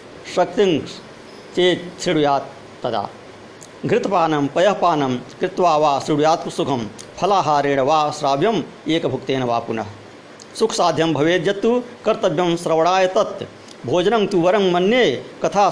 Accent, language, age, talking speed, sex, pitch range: native, Hindi, 50-69, 90 wpm, male, 140-185 Hz